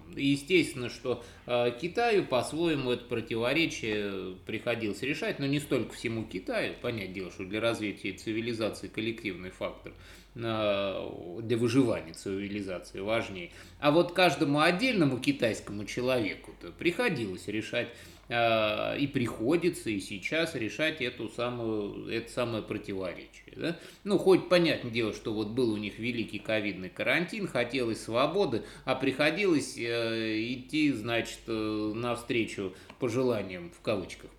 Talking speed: 115 wpm